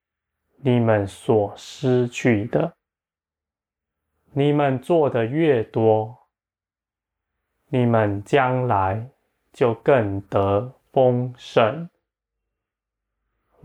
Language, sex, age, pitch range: Chinese, male, 20-39, 105-135 Hz